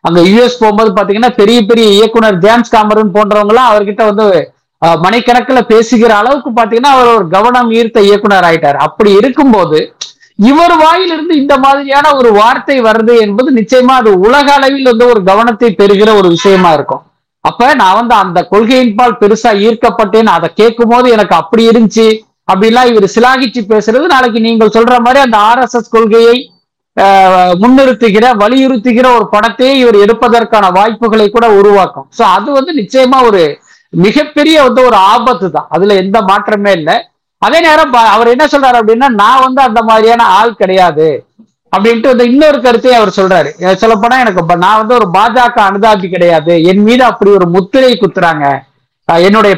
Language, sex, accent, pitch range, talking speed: Tamil, male, native, 205-250 Hz, 150 wpm